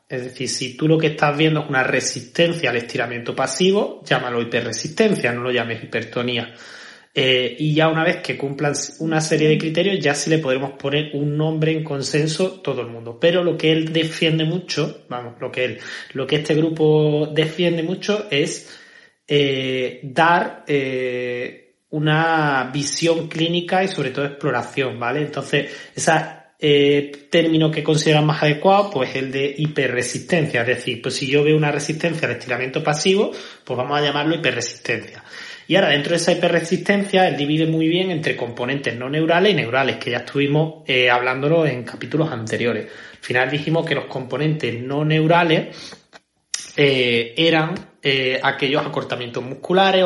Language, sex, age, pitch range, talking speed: Spanish, male, 30-49, 130-160 Hz, 165 wpm